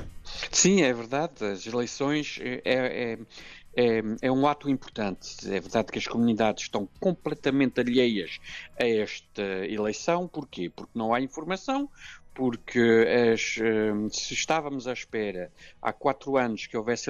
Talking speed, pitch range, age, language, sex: 125 wpm, 110-145 Hz, 50-69, Portuguese, male